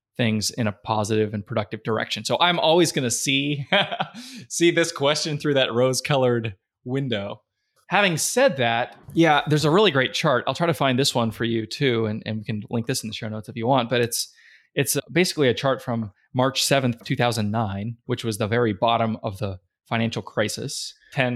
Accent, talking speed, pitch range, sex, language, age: American, 205 wpm, 115-150 Hz, male, English, 20-39